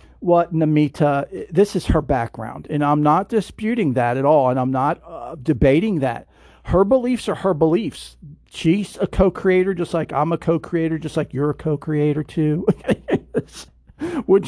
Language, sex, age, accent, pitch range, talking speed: English, male, 50-69, American, 145-200 Hz, 160 wpm